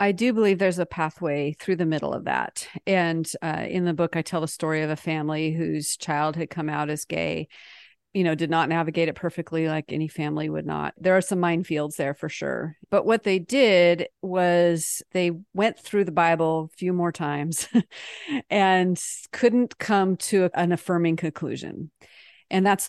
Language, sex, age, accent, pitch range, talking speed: English, female, 40-59, American, 160-190 Hz, 190 wpm